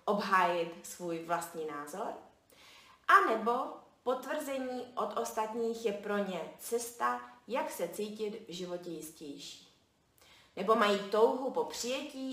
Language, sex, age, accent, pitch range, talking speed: Czech, female, 30-49, native, 175-255 Hz, 115 wpm